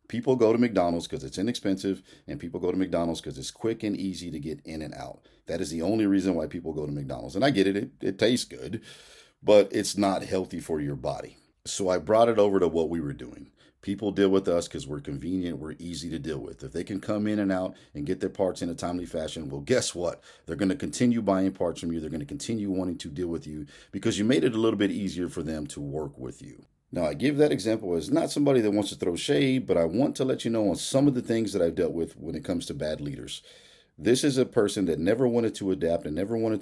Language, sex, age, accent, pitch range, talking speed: English, male, 40-59, American, 80-105 Hz, 270 wpm